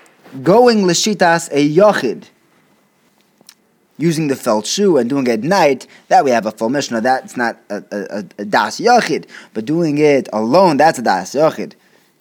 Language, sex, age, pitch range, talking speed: English, male, 20-39, 130-185 Hz, 170 wpm